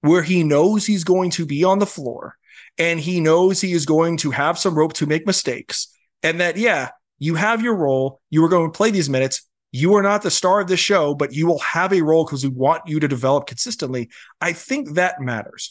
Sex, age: male, 30-49